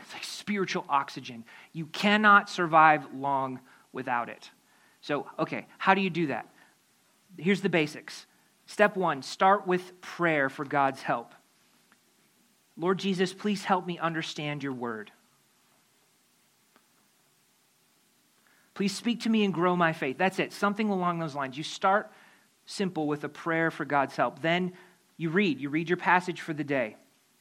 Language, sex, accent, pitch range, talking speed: English, male, American, 160-200 Hz, 145 wpm